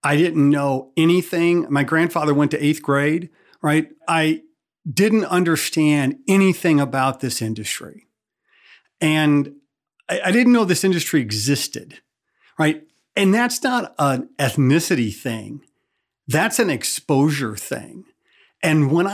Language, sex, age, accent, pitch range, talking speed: English, male, 40-59, American, 140-185 Hz, 120 wpm